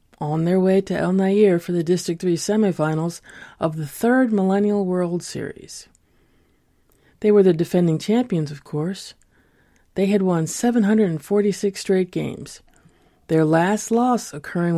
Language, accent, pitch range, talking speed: English, American, 160-205 Hz, 140 wpm